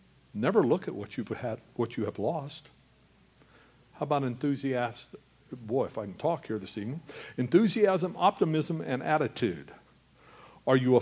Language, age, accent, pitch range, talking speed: English, 60-79, American, 135-180 Hz, 150 wpm